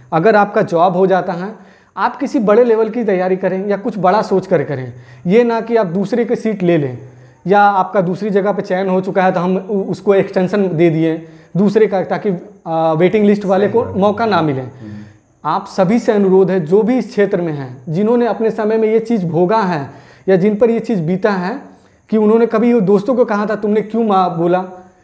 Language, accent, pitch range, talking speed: Hindi, native, 175-220 Hz, 215 wpm